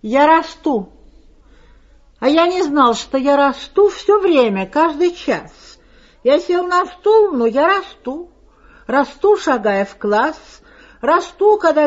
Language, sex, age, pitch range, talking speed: Russian, female, 50-69, 260-355 Hz, 130 wpm